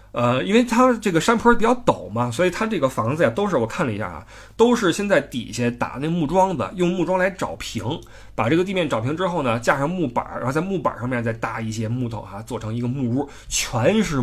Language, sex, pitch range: Chinese, male, 115-170 Hz